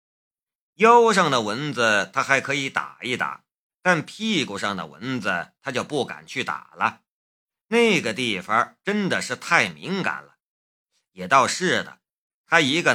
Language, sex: Chinese, male